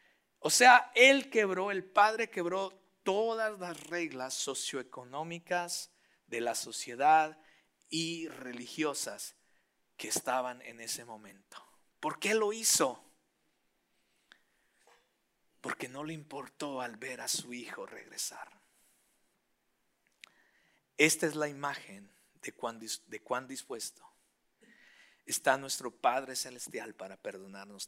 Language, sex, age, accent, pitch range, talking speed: Spanish, male, 50-69, Mexican, 125-170 Hz, 105 wpm